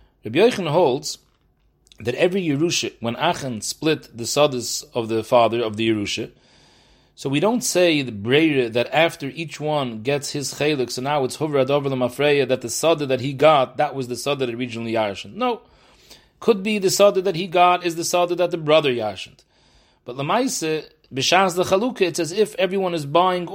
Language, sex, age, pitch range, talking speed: English, male, 40-59, 125-175 Hz, 195 wpm